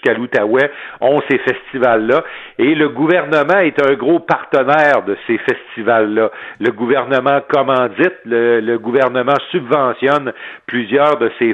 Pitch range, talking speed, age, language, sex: 125-180 Hz, 130 wpm, 50-69, French, male